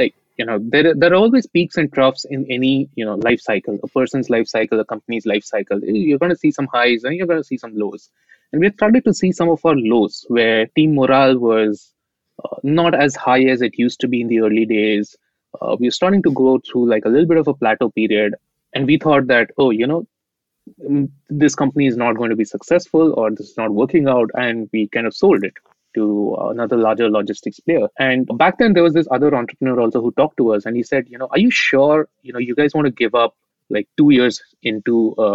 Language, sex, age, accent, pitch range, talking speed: English, male, 20-39, Indian, 115-145 Hz, 240 wpm